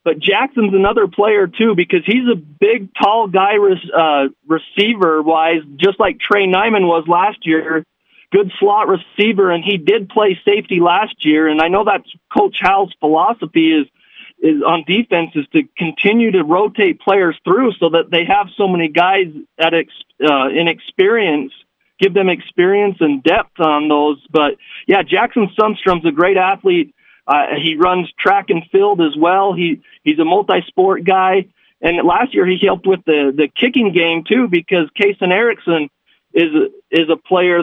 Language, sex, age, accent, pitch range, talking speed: English, male, 40-59, American, 165-210 Hz, 170 wpm